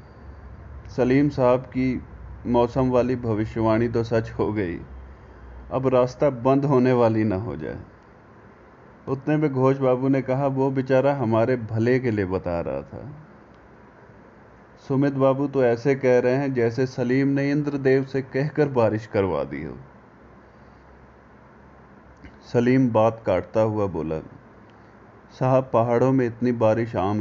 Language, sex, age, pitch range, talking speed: Hindi, male, 30-49, 105-135 Hz, 110 wpm